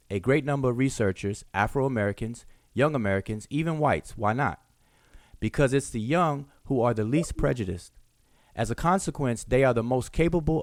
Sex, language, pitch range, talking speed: male, English, 105-140 Hz, 165 wpm